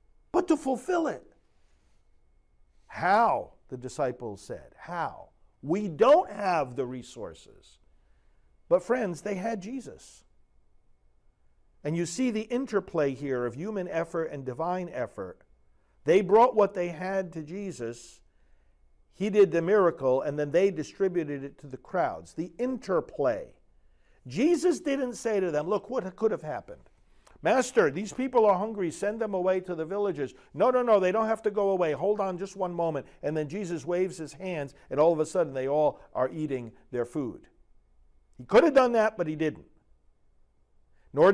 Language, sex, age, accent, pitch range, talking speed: English, male, 50-69, American, 140-215 Hz, 165 wpm